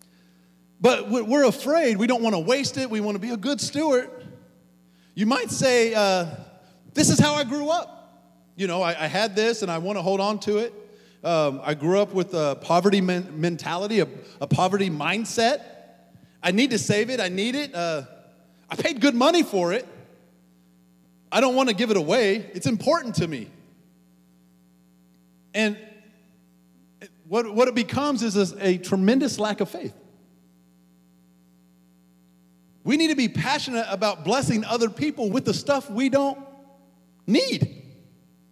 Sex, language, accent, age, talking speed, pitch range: male, English, American, 30-49, 165 wpm, 155-245 Hz